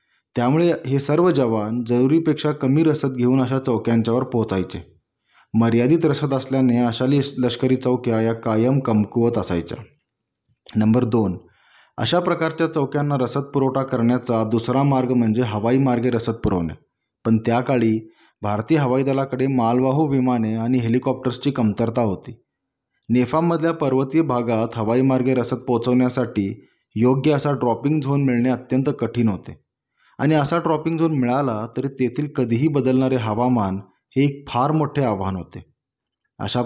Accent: native